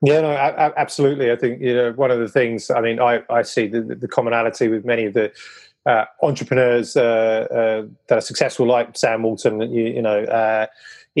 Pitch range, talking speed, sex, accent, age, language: 110-125 Hz, 200 wpm, male, British, 30-49, English